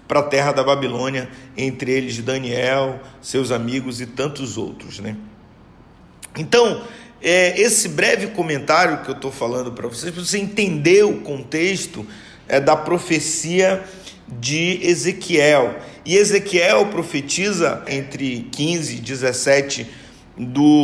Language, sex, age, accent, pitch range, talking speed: Portuguese, male, 50-69, Brazilian, 140-185 Hz, 125 wpm